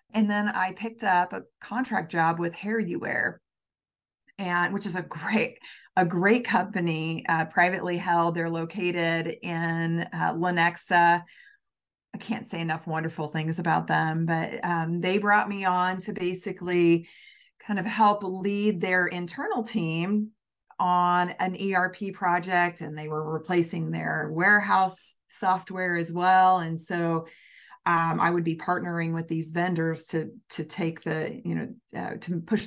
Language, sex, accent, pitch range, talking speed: English, female, American, 165-200 Hz, 150 wpm